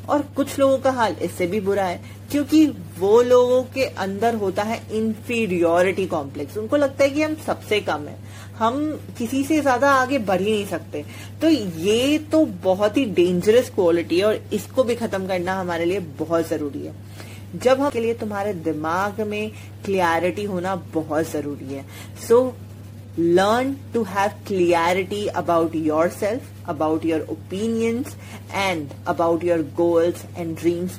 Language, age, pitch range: Hindi, 30-49, 155-235 Hz